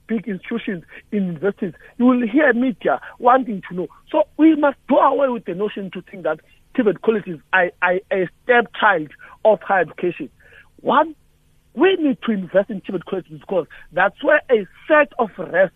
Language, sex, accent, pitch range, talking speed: English, male, South African, 175-245 Hz, 175 wpm